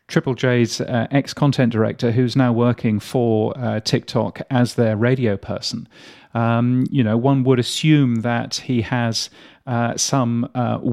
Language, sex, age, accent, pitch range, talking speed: English, male, 40-59, British, 115-130 Hz, 150 wpm